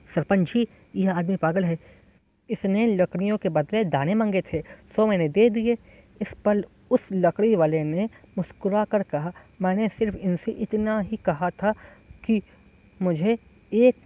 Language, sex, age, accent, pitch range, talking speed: Hindi, female, 20-39, native, 170-215 Hz, 155 wpm